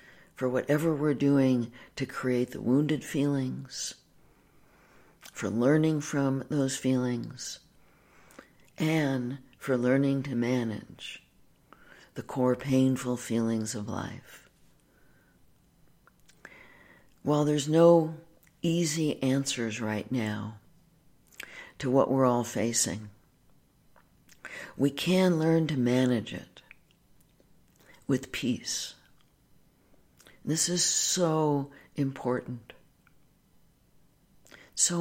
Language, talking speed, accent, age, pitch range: English, 85 wpm, American, 60-79, 120-150 Hz